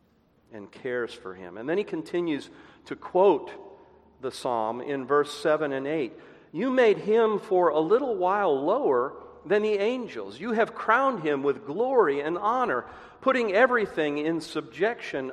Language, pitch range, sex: English, 145-240 Hz, male